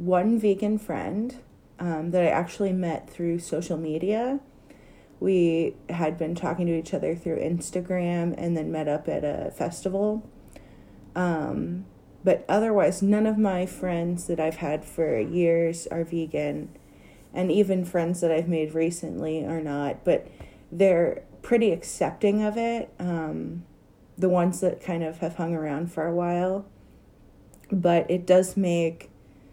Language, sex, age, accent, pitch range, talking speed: English, female, 30-49, American, 160-195 Hz, 145 wpm